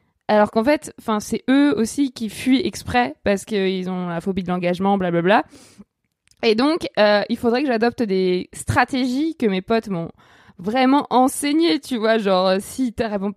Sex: female